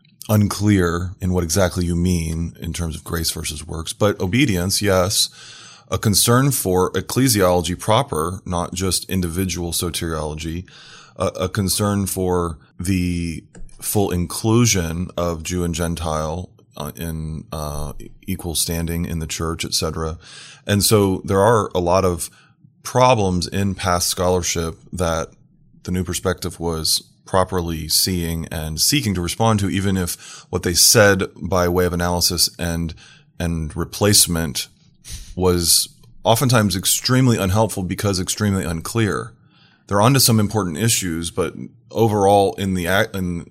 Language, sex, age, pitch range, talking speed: English, male, 20-39, 85-100 Hz, 130 wpm